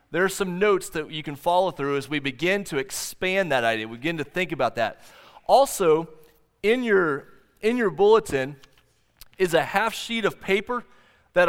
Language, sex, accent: English, male, American